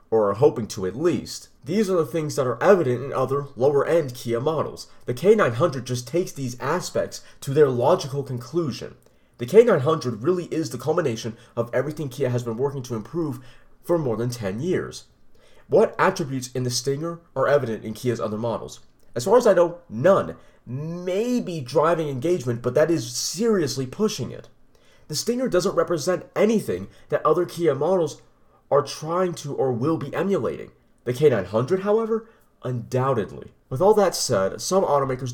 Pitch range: 120-170 Hz